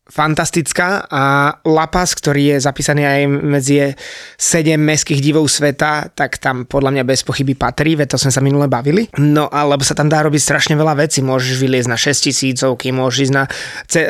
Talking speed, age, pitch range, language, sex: 185 wpm, 20-39, 140-155 Hz, Slovak, male